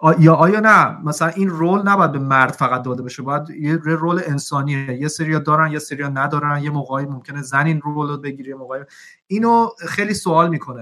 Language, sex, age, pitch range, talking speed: Persian, male, 30-49, 135-170 Hz, 165 wpm